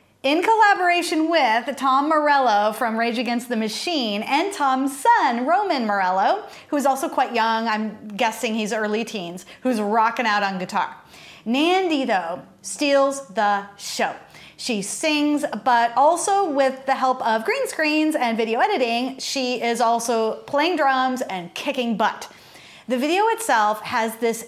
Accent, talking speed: American, 150 wpm